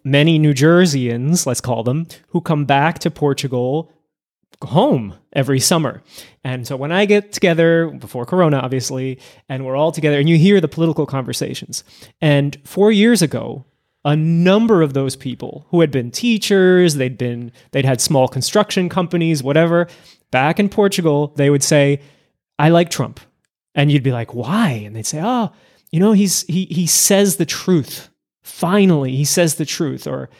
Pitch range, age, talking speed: 135-180 Hz, 20-39, 170 wpm